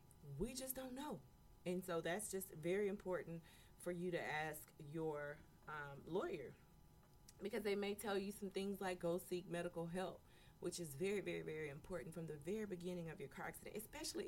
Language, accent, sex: English, American, female